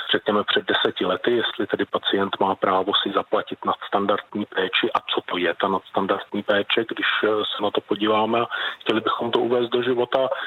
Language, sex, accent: Czech, male, native